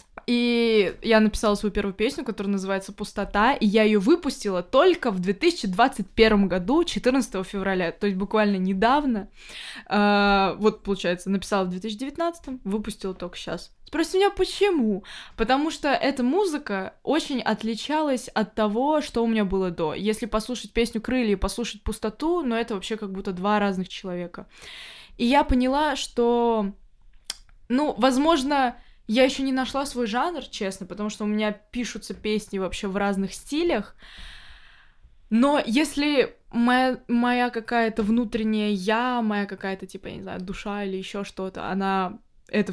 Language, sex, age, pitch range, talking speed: Russian, female, 20-39, 195-245 Hz, 145 wpm